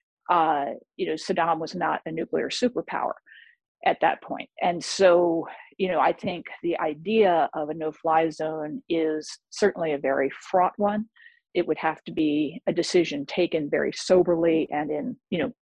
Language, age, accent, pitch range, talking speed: English, 50-69, American, 165-235 Hz, 170 wpm